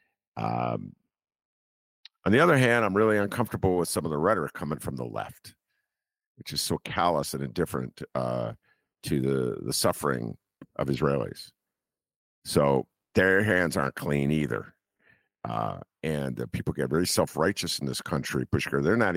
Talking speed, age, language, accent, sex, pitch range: 150 wpm, 50-69, English, American, male, 80-130 Hz